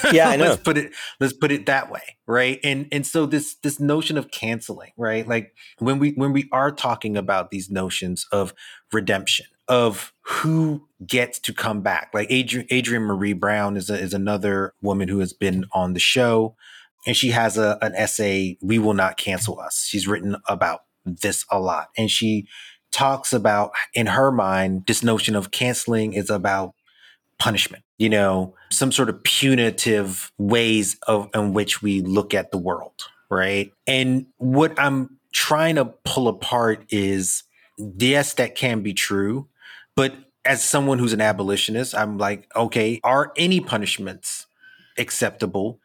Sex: male